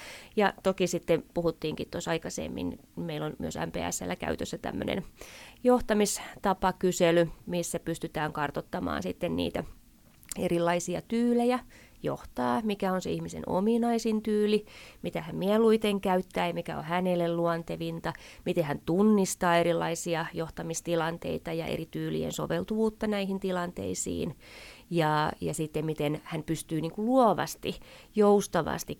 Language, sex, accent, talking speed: Finnish, female, native, 115 wpm